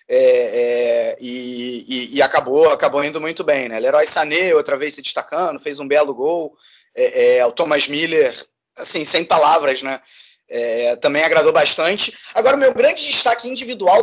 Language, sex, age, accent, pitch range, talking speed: Portuguese, male, 20-39, Brazilian, 145-235 Hz, 165 wpm